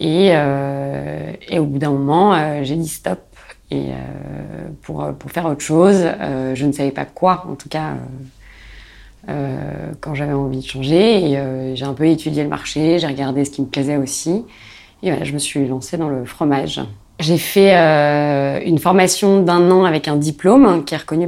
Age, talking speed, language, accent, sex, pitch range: 30-49, 205 wpm, French, French, female, 140-170 Hz